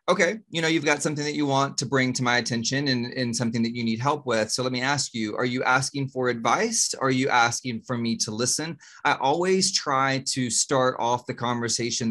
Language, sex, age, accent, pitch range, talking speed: English, male, 30-49, American, 120-140 Hz, 235 wpm